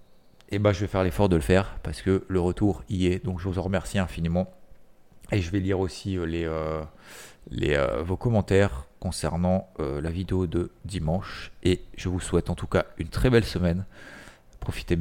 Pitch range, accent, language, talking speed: 85-100 Hz, French, French, 205 wpm